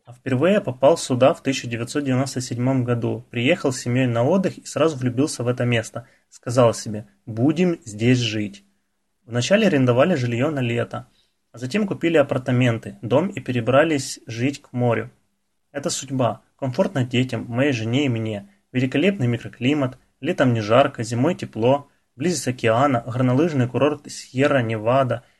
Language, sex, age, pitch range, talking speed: Russian, male, 20-39, 120-140 Hz, 145 wpm